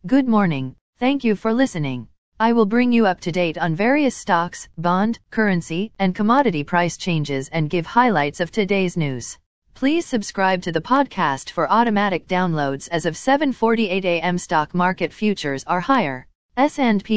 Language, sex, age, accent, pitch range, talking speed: English, female, 40-59, American, 165-220 Hz, 155 wpm